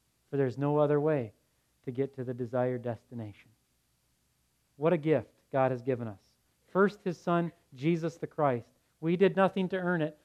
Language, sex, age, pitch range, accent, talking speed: English, male, 40-59, 130-170 Hz, American, 175 wpm